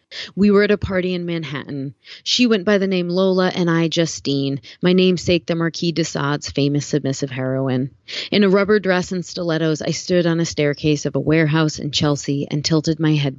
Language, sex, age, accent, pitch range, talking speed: English, female, 30-49, American, 140-175 Hz, 200 wpm